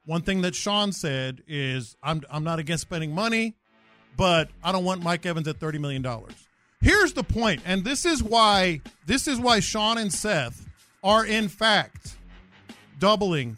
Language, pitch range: English, 145-215 Hz